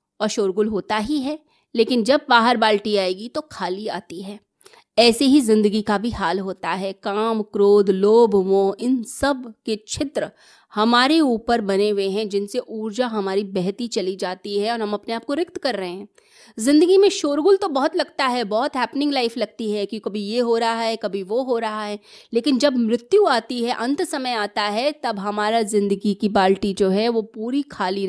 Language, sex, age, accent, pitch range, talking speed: Hindi, female, 20-39, native, 205-265 Hz, 195 wpm